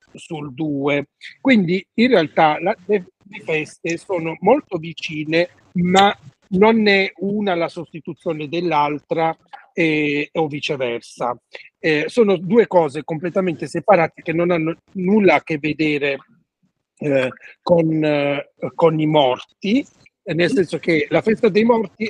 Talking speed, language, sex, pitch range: 120 wpm, Italian, male, 145-180 Hz